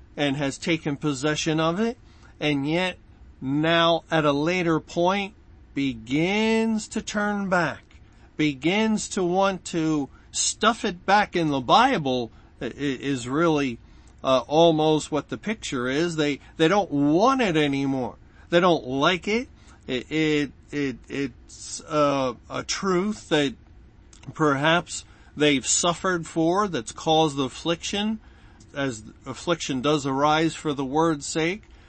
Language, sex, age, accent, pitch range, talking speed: English, male, 50-69, American, 130-170 Hz, 130 wpm